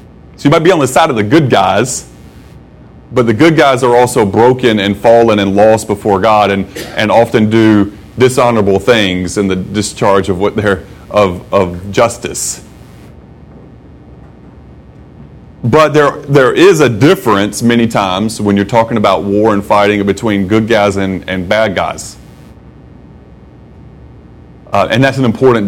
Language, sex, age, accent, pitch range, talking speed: English, male, 30-49, American, 100-125 Hz, 155 wpm